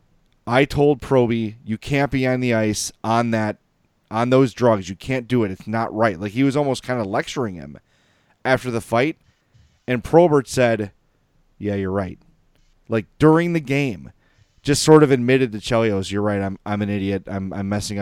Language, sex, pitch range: English, male, 100-125 Hz